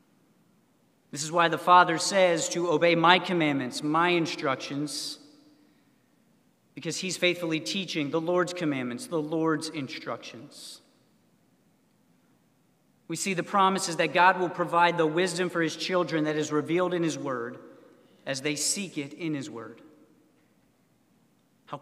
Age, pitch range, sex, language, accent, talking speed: 40-59, 155-190 Hz, male, English, American, 135 wpm